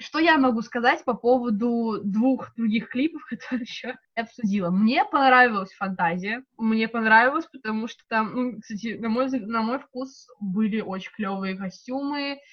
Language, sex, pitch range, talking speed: Russian, female, 200-250 Hz, 155 wpm